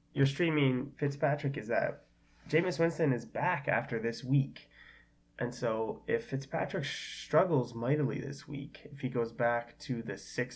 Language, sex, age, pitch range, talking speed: English, male, 20-39, 115-145 Hz, 155 wpm